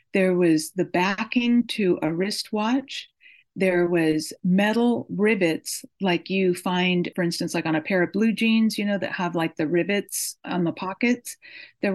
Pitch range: 165-205 Hz